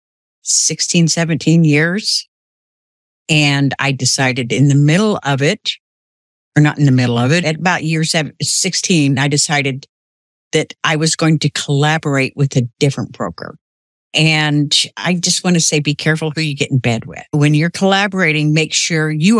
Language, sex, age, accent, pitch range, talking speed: English, female, 60-79, American, 135-160 Hz, 165 wpm